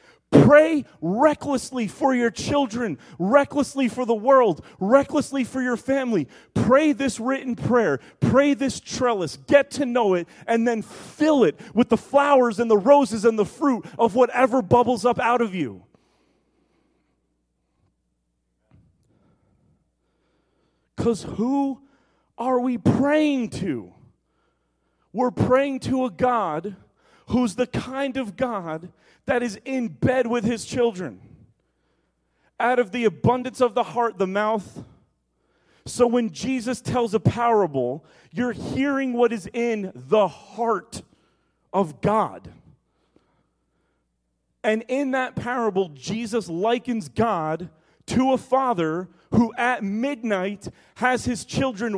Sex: male